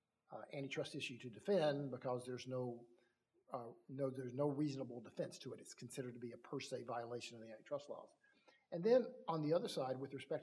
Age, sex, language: 50-69, male, English